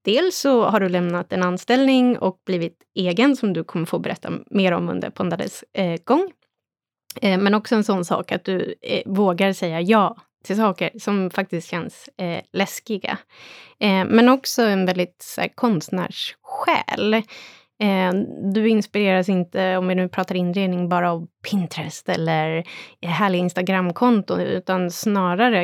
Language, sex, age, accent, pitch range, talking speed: Swedish, female, 20-39, native, 180-220 Hz, 145 wpm